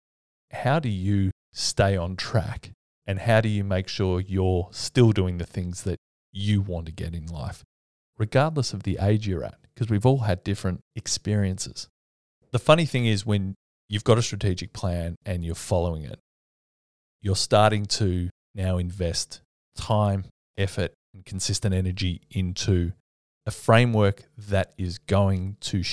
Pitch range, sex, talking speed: 90-105 Hz, male, 155 wpm